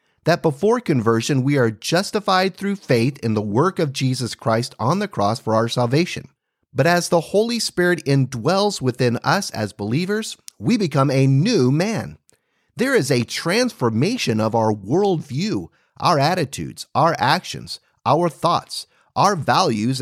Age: 40-59